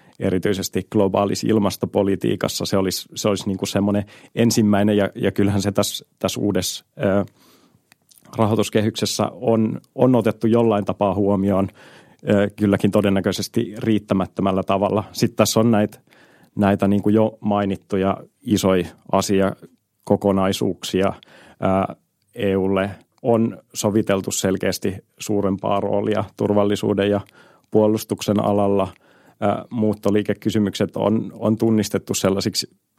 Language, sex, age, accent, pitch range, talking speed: Finnish, male, 30-49, native, 95-110 Hz, 105 wpm